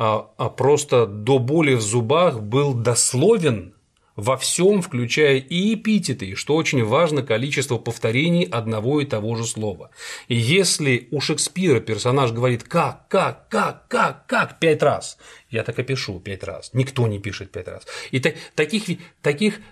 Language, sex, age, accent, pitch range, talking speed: Russian, male, 30-49, native, 115-150 Hz, 155 wpm